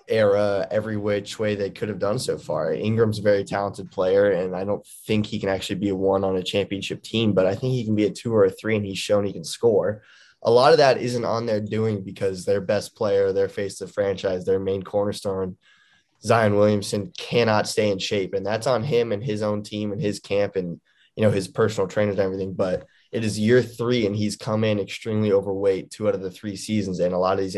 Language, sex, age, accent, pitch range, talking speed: English, male, 20-39, American, 100-110 Hz, 245 wpm